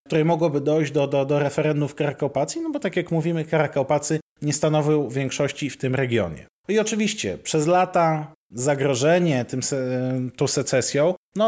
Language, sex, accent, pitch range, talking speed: Polish, male, native, 130-170 Hz, 150 wpm